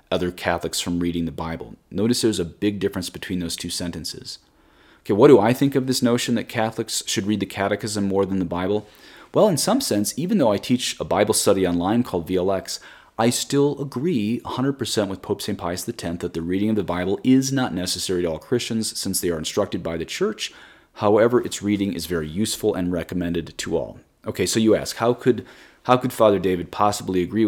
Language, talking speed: English, 210 wpm